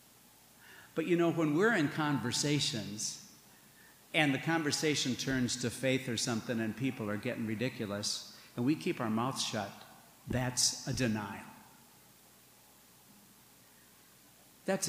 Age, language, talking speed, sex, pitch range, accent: 60-79, English, 120 wpm, male, 115-140 Hz, American